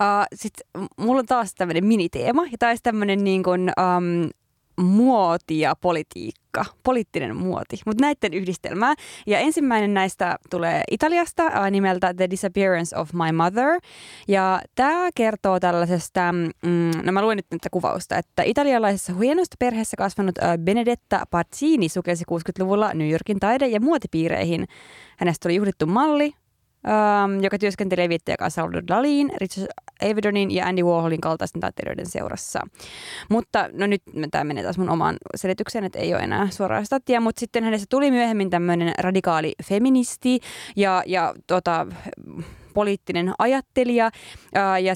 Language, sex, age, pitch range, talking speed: Finnish, female, 20-39, 175-230 Hz, 140 wpm